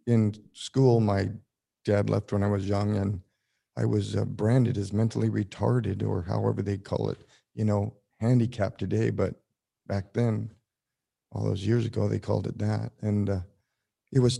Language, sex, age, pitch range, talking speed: English, male, 50-69, 105-120 Hz, 170 wpm